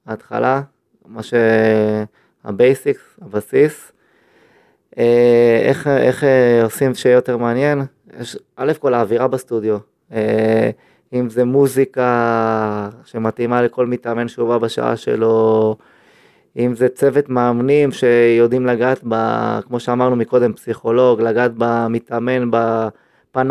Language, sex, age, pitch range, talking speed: Hebrew, male, 20-39, 115-130 Hz, 95 wpm